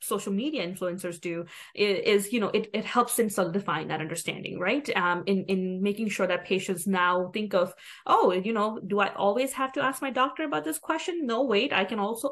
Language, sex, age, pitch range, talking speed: English, female, 20-39, 180-230 Hz, 225 wpm